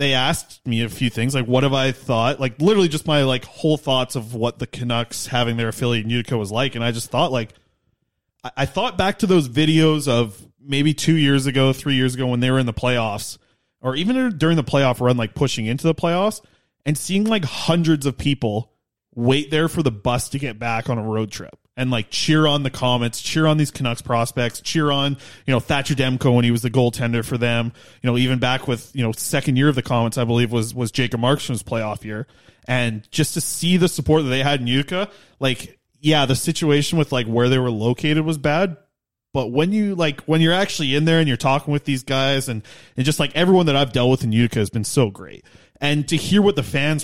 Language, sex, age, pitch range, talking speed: English, male, 20-39, 120-150 Hz, 235 wpm